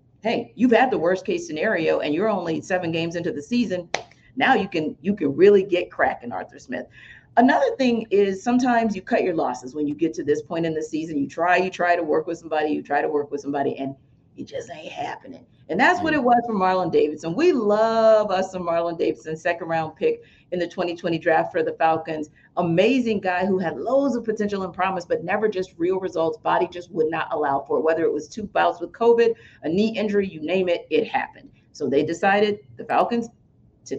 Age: 40-59